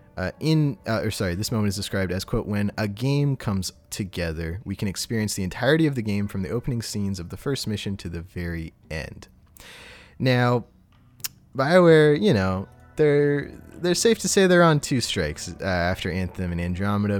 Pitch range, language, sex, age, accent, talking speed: 95-130 Hz, English, male, 20-39, American, 190 wpm